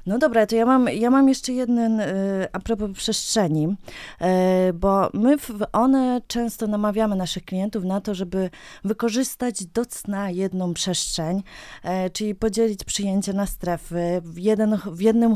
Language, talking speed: Polish, 145 wpm